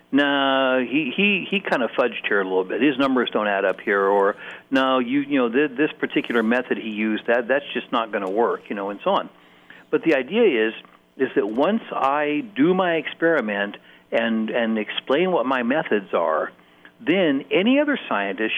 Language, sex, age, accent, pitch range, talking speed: English, male, 60-79, American, 110-140 Hz, 200 wpm